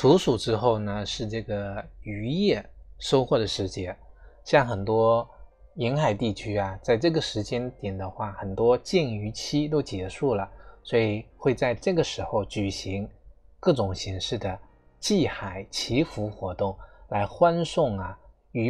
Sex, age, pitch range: male, 20-39, 100-130 Hz